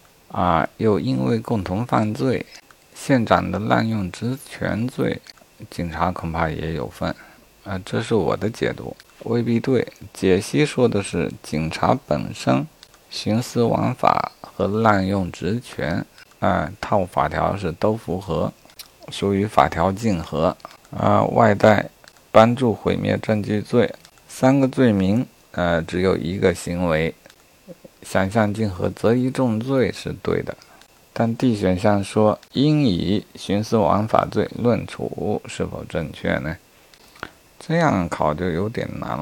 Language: Chinese